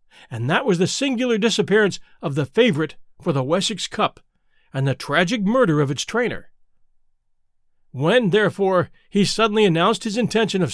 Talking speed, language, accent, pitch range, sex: 155 wpm, English, American, 165-225 Hz, male